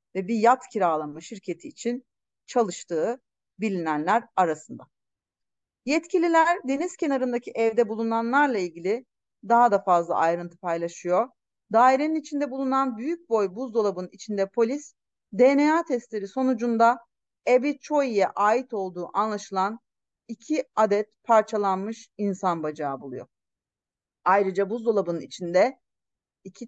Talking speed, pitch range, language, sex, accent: 105 wpm, 195-260 Hz, Turkish, female, native